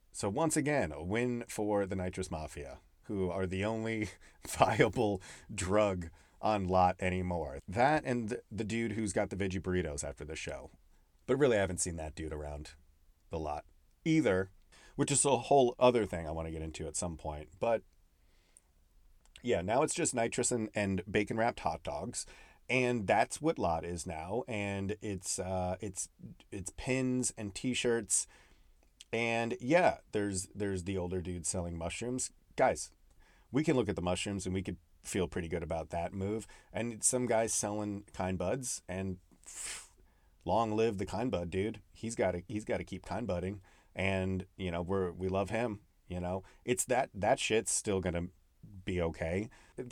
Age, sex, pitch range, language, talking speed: 30-49, male, 85-110 Hz, English, 175 wpm